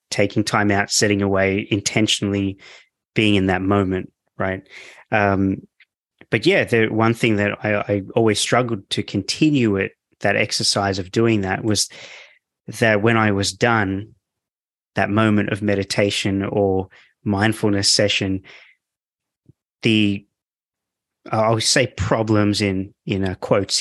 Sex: male